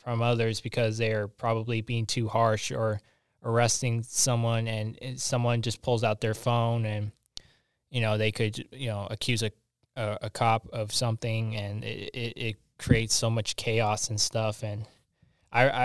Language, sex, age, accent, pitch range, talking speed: English, male, 10-29, American, 110-125 Hz, 165 wpm